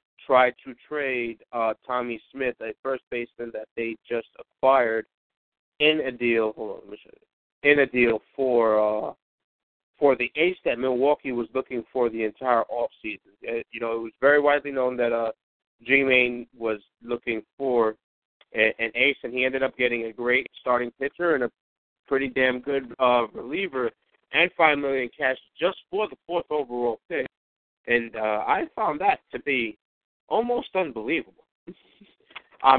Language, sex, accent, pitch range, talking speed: English, male, American, 115-145 Hz, 165 wpm